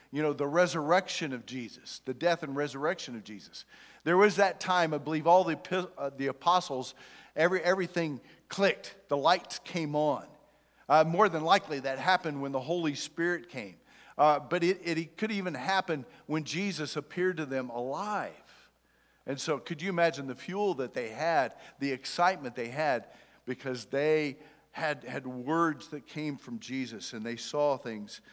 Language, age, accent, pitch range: English, 50-69, American, 135-170 Hz